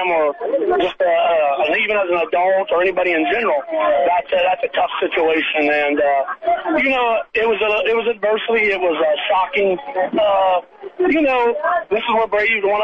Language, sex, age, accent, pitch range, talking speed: English, male, 40-59, American, 170-230 Hz, 190 wpm